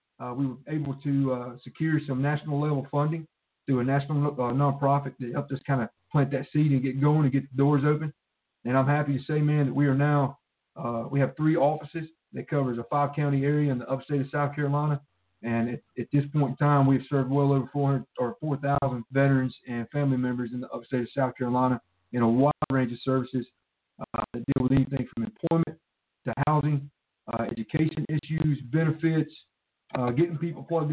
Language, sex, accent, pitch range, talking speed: English, male, American, 125-150 Hz, 205 wpm